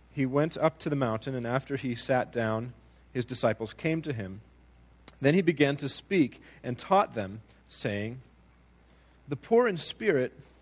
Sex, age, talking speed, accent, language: male, 40-59, 165 wpm, American, English